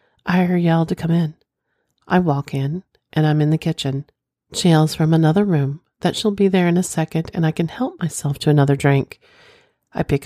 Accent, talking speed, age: American, 210 wpm, 40-59